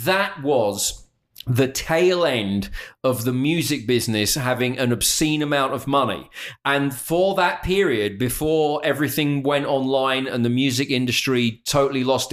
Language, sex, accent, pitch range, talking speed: English, male, British, 125-160 Hz, 140 wpm